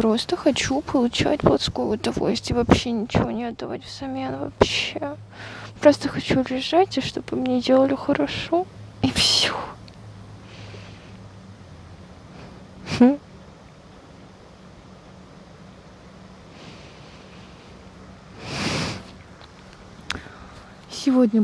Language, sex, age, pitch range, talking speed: Russian, female, 20-39, 205-250 Hz, 65 wpm